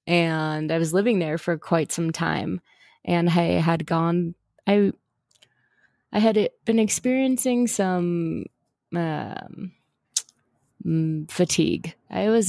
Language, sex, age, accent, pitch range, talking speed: English, female, 20-39, American, 160-185 Hz, 115 wpm